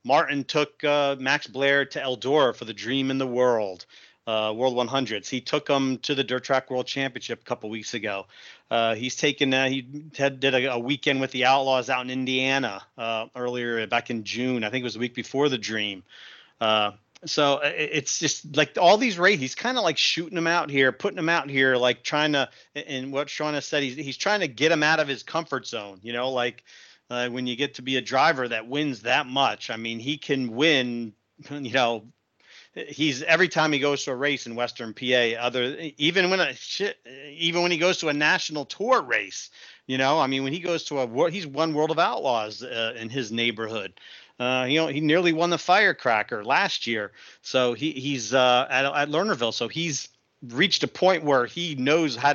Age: 40-59